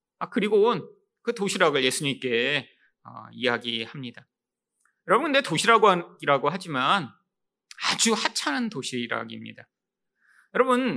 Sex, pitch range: male, 155-250 Hz